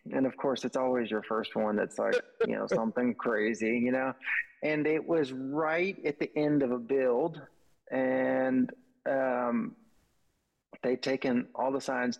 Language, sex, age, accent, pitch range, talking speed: English, male, 20-39, American, 125-145 Hz, 160 wpm